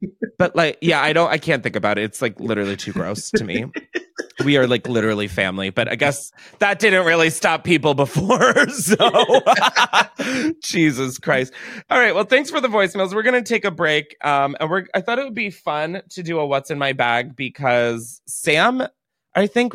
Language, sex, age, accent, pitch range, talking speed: English, male, 30-49, American, 125-190 Hz, 200 wpm